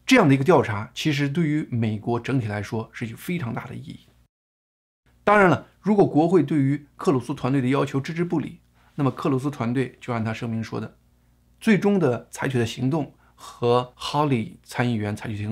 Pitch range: 110-145 Hz